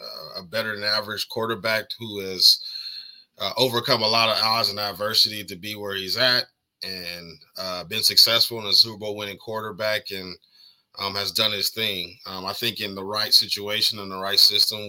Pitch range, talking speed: 95-115 Hz, 190 wpm